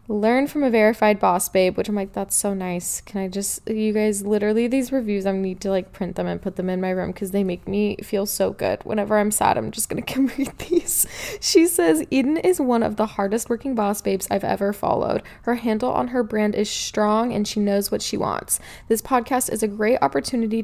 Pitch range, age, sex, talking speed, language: 190-225 Hz, 20-39, female, 235 wpm, English